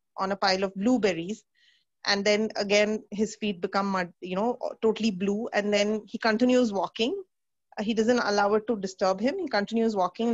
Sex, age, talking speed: female, 30-49, 180 wpm